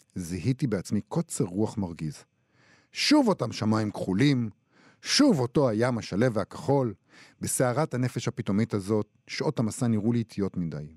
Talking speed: 130 wpm